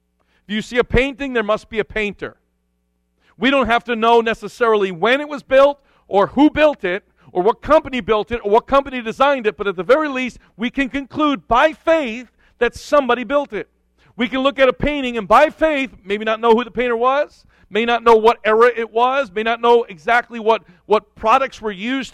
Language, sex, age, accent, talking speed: English, male, 50-69, American, 215 wpm